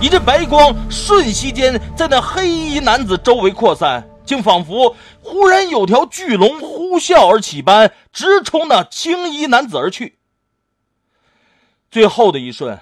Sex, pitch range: male, 180-295 Hz